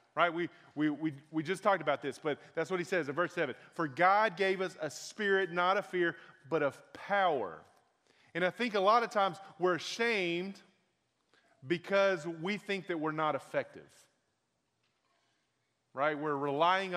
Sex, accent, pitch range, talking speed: male, American, 150-195 Hz, 165 wpm